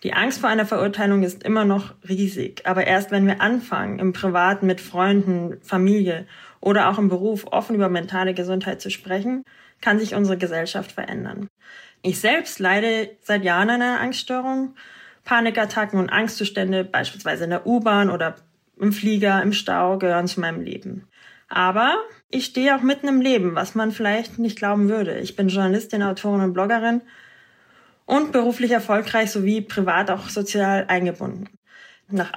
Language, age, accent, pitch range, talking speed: German, 20-39, German, 190-230 Hz, 160 wpm